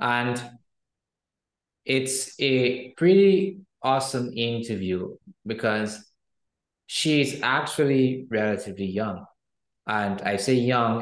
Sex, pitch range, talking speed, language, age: male, 105-125 Hz, 80 wpm, English, 20-39